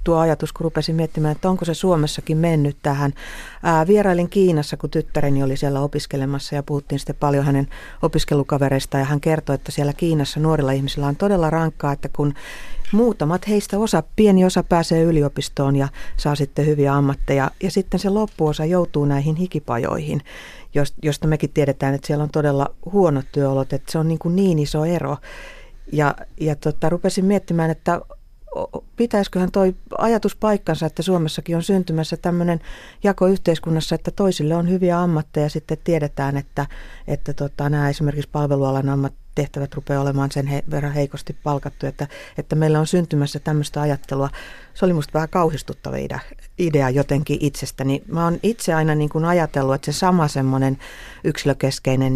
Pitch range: 140-170 Hz